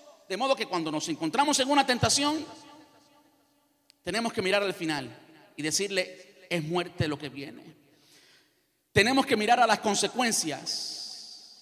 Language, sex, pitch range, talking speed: Spanish, male, 210-280 Hz, 140 wpm